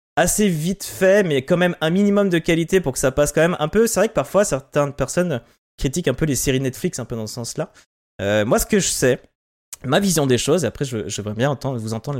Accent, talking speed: French, 260 wpm